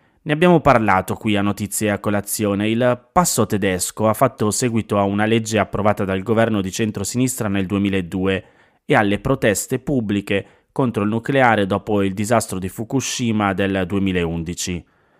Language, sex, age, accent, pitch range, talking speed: Italian, male, 20-39, native, 100-120 Hz, 150 wpm